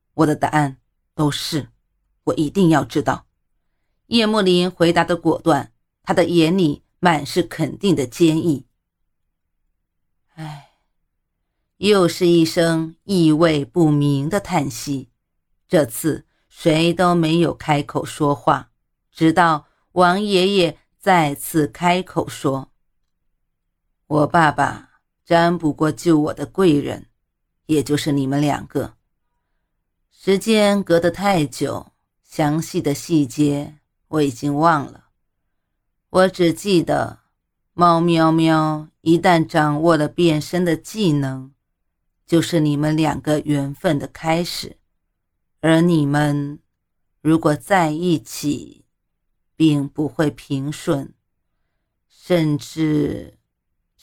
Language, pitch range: Chinese, 140-170 Hz